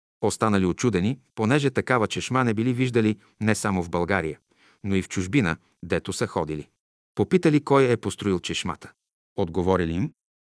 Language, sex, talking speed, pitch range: Bulgarian, male, 150 wpm, 95-125 Hz